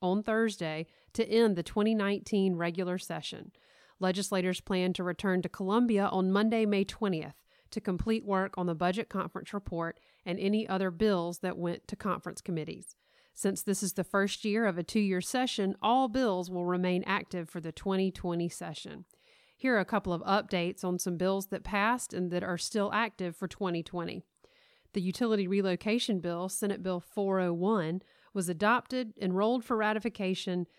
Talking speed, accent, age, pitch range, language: 165 wpm, American, 40-59, 180-215 Hz, English